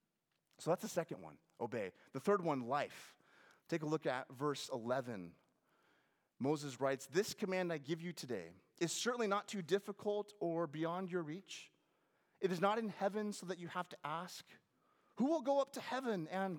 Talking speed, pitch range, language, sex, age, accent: 185 wpm, 140-200 Hz, English, male, 30-49, American